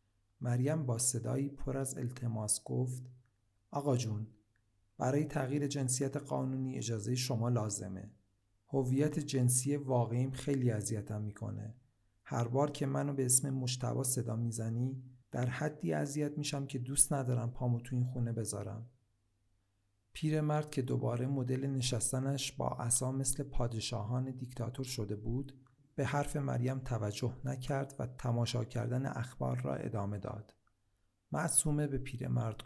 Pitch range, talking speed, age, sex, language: 115-135 Hz, 130 wpm, 50-69, male, Persian